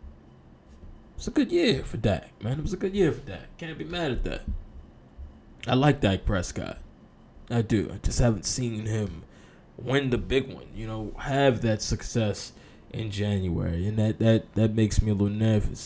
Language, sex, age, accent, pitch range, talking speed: English, male, 20-39, American, 105-175 Hz, 190 wpm